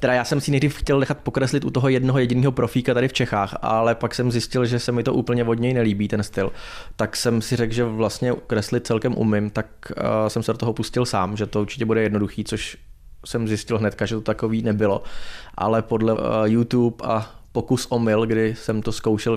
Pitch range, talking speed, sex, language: 110-120 Hz, 215 wpm, male, Czech